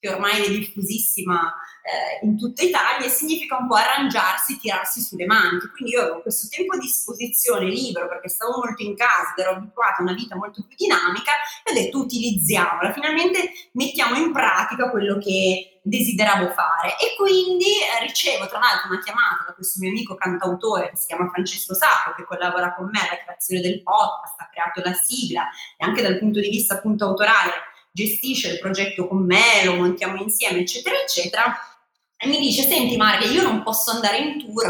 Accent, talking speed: native, 185 wpm